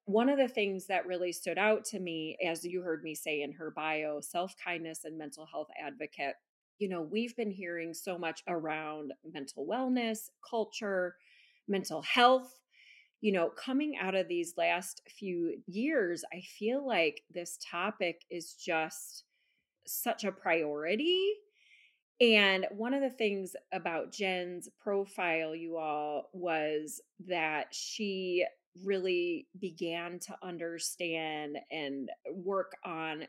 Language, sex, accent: English, female, American